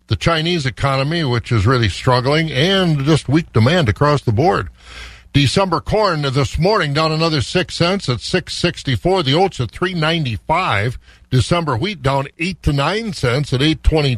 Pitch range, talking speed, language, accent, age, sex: 125-165 Hz, 180 wpm, English, American, 60-79, male